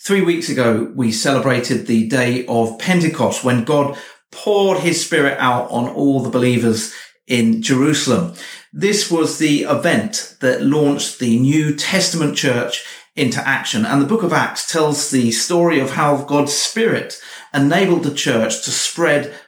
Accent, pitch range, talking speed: British, 125-165 Hz, 155 wpm